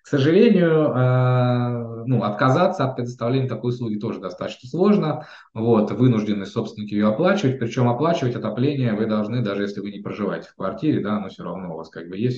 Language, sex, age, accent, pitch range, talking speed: Russian, male, 20-39, native, 105-135 Hz, 170 wpm